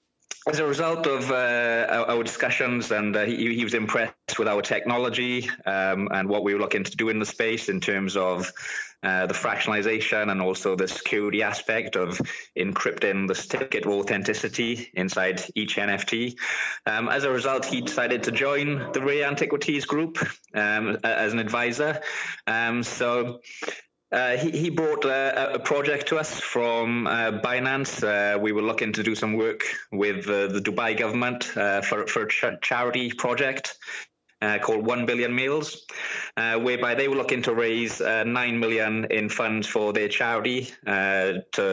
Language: English